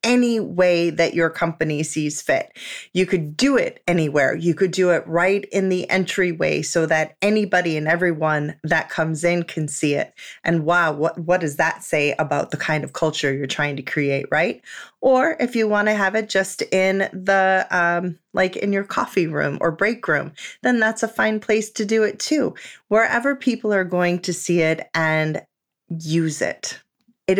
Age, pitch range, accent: 30-49, 160-195 Hz, American